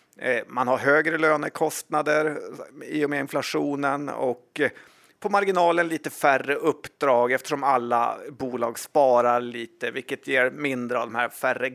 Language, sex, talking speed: Swedish, male, 135 wpm